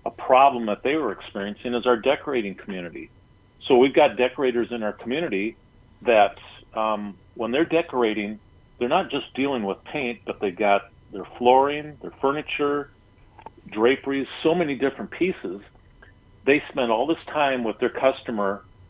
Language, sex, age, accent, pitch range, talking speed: English, male, 40-59, American, 100-125 Hz, 150 wpm